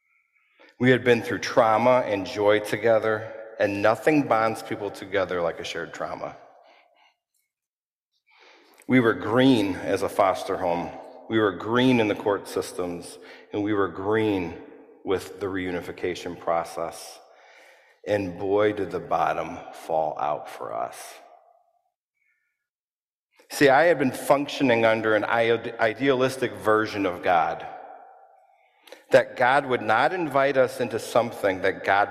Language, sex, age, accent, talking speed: English, male, 50-69, American, 130 wpm